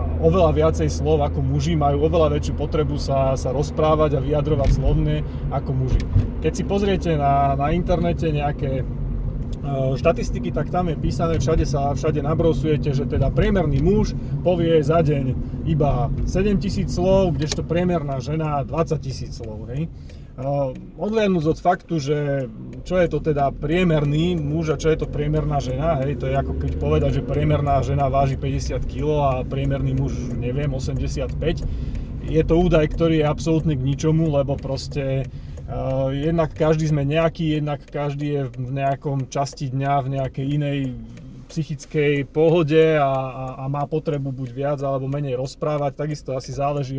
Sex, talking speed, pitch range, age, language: male, 160 wpm, 135-155 Hz, 30-49, Slovak